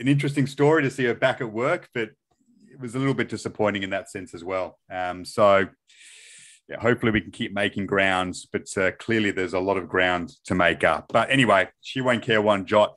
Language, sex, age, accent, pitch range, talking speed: English, male, 30-49, Australian, 105-145 Hz, 220 wpm